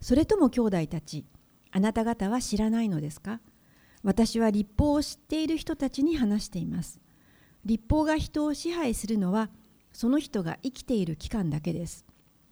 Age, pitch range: 60-79, 180-260 Hz